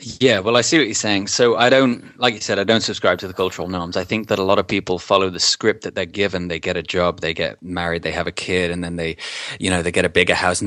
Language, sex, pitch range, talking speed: English, male, 90-105 Hz, 310 wpm